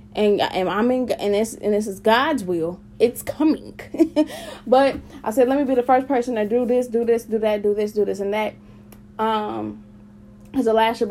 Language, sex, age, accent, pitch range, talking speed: English, female, 10-29, American, 200-255 Hz, 210 wpm